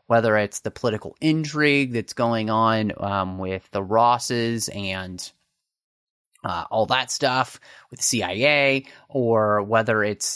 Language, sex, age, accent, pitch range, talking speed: English, male, 30-49, American, 105-135 Hz, 135 wpm